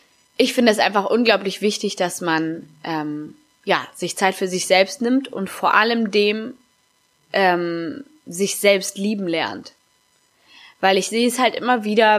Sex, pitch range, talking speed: female, 185-225 Hz, 160 wpm